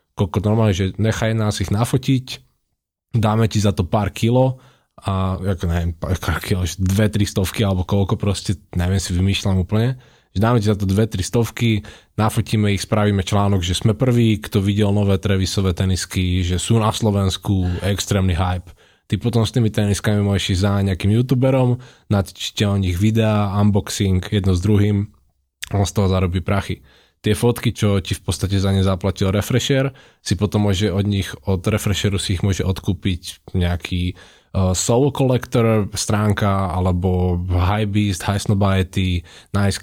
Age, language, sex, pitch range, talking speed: 20-39, Slovak, male, 95-110 Hz, 165 wpm